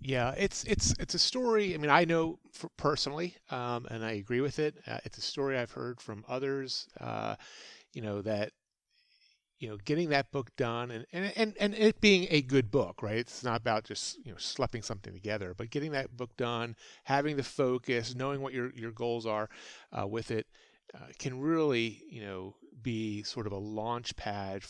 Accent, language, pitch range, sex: American, English, 110-145 Hz, male